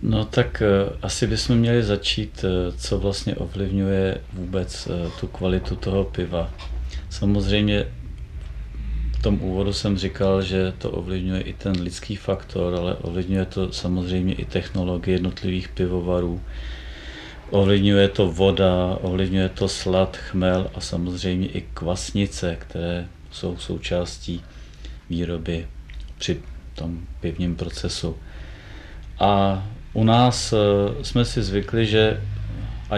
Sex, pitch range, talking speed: male, 85-100 Hz, 110 wpm